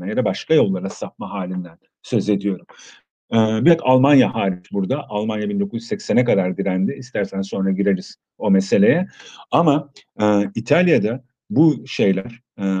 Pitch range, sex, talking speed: 100-120 Hz, male, 130 wpm